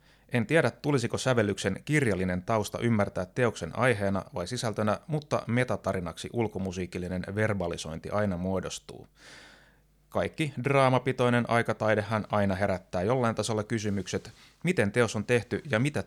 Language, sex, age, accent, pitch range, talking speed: Finnish, male, 30-49, native, 95-125 Hz, 115 wpm